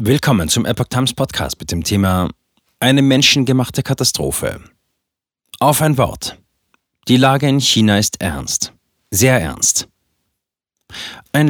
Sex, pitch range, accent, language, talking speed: male, 95-125 Hz, German, German, 120 wpm